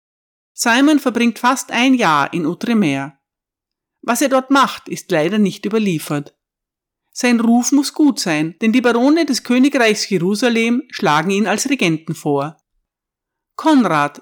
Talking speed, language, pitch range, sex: 135 wpm, German, 180-255 Hz, female